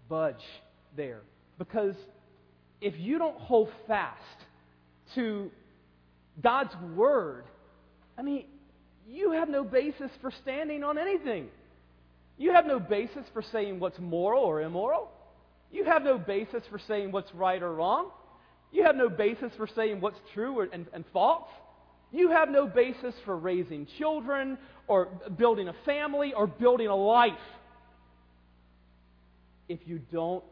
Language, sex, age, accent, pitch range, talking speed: English, male, 40-59, American, 150-220 Hz, 140 wpm